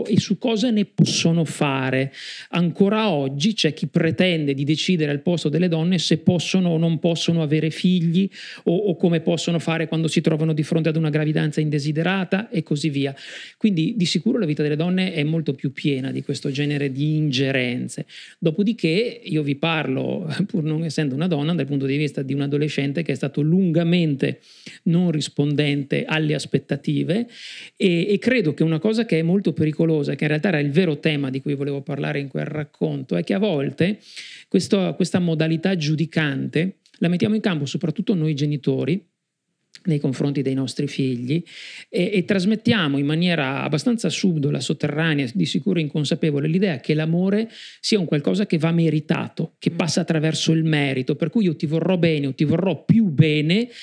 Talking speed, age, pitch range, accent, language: 180 wpm, 50-69, 150-180 Hz, native, Italian